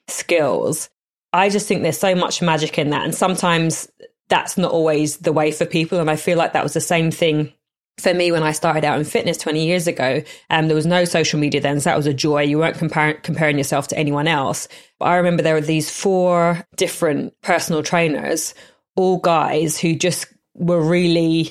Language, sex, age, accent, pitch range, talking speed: English, female, 20-39, British, 150-175 Hz, 210 wpm